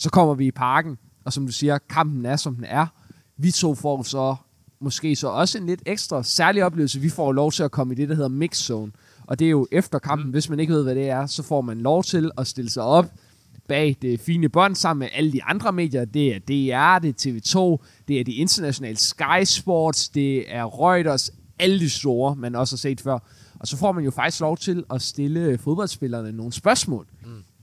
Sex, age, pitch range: male, 20-39, 125-165 Hz